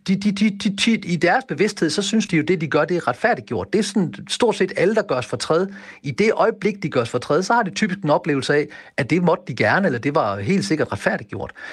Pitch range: 140-190 Hz